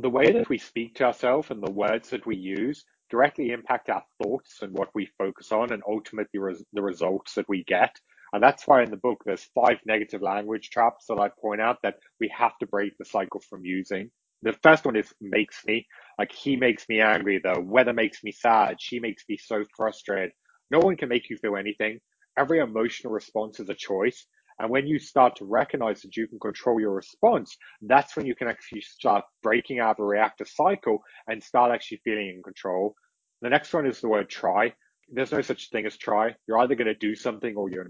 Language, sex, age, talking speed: English, male, 30-49, 220 wpm